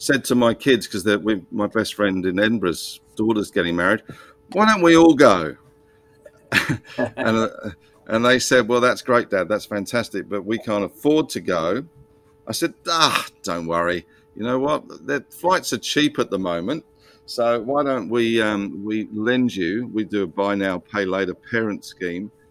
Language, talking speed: English, 180 wpm